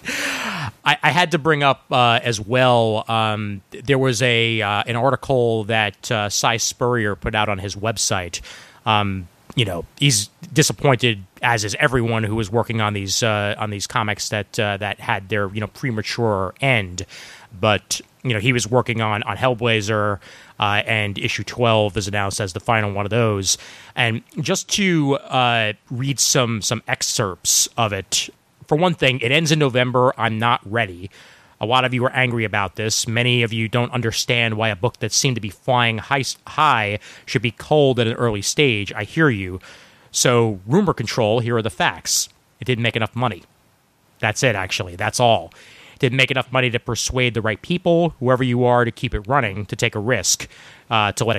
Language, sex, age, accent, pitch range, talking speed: English, male, 30-49, American, 105-130 Hz, 195 wpm